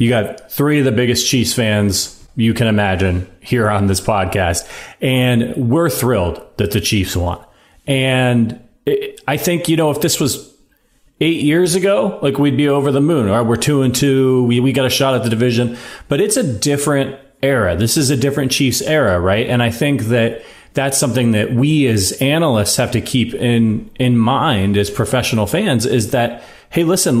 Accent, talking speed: American, 195 wpm